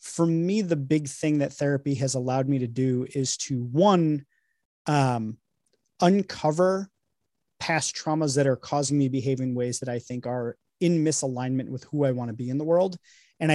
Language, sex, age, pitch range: English, male, 30-49, 130-160 Hz